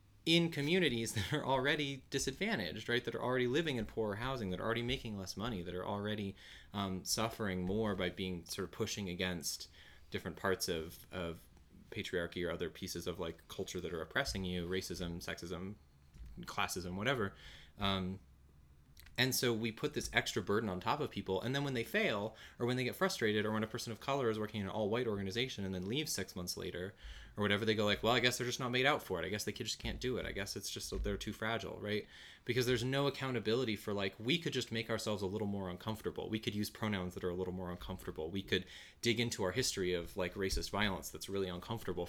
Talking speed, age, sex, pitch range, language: 225 wpm, 20-39, male, 90-115 Hz, English